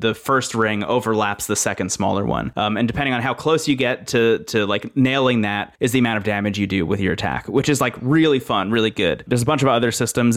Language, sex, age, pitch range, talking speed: English, male, 30-49, 110-140 Hz, 255 wpm